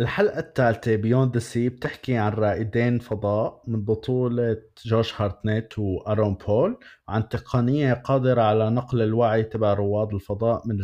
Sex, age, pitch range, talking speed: male, 20-39, 110-140 Hz, 135 wpm